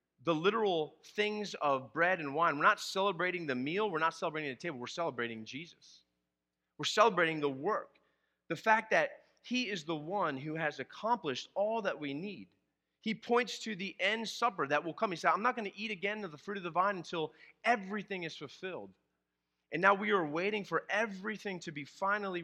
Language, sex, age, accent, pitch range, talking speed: English, male, 30-49, American, 135-205 Hz, 200 wpm